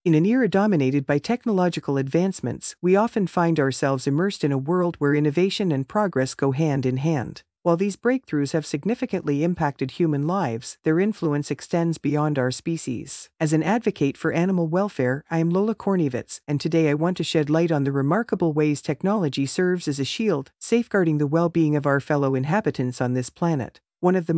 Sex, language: female, English